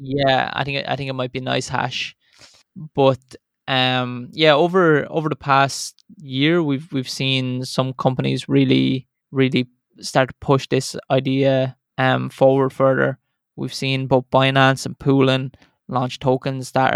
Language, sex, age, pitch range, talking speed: English, male, 20-39, 130-140 Hz, 150 wpm